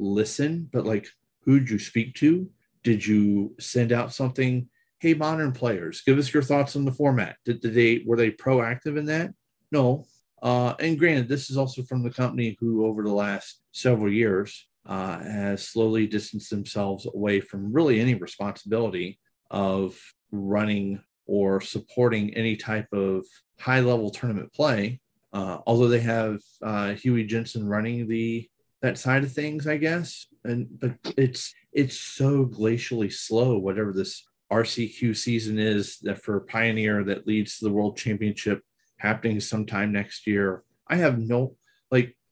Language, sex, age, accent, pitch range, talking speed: English, male, 40-59, American, 105-130 Hz, 160 wpm